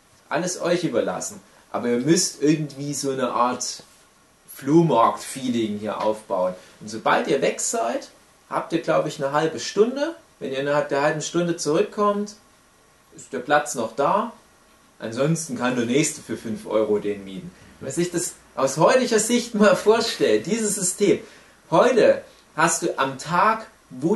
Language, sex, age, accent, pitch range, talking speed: German, male, 30-49, German, 135-190 Hz, 155 wpm